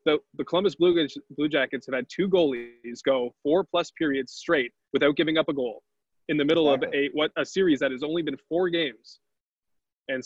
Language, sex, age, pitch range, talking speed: English, male, 20-39, 130-150 Hz, 200 wpm